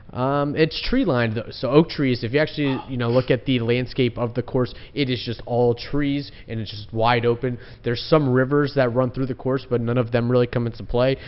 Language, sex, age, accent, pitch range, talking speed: English, male, 20-39, American, 115-130 Hz, 240 wpm